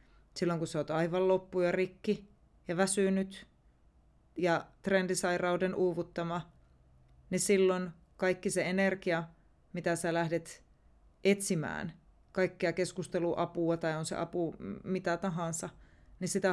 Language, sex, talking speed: Finnish, female, 120 wpm